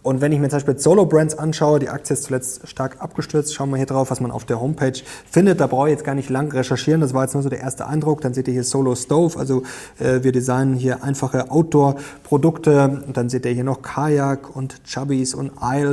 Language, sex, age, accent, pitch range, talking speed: German, male, 30-49, German, 130-150 Hz, 235 wpm